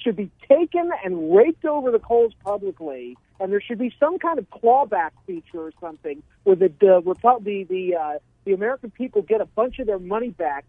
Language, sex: English, male